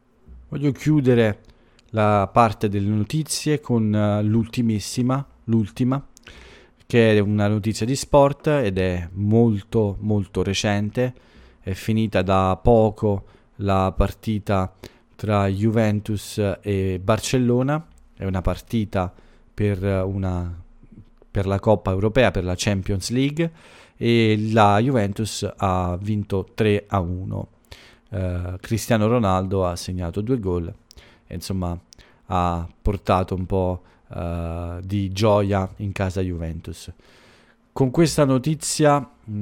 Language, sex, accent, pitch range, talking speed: English, male, Italian, 95-115 Hz, 105 wpm